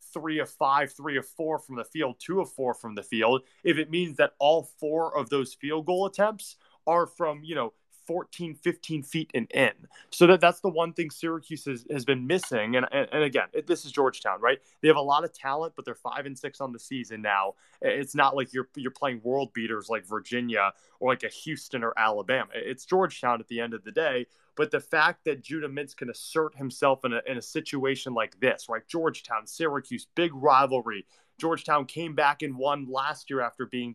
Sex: male